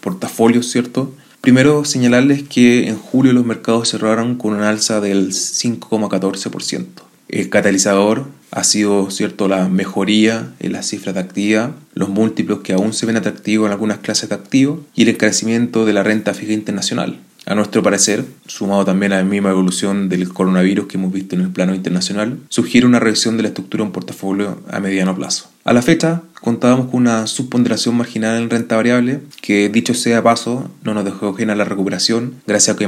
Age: 20-39